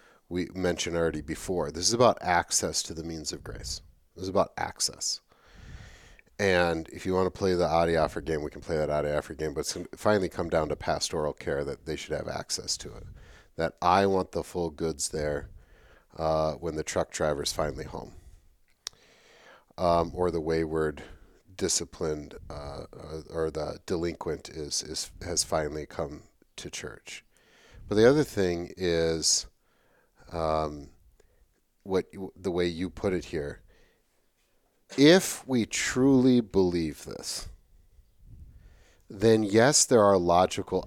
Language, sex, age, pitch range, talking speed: English, male, 40-59, 80-100 Hz, 150 wpm